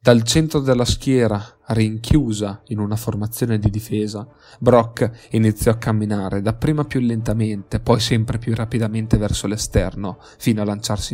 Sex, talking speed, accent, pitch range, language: male, 140 wpm, native, 105-125 Hz, Italian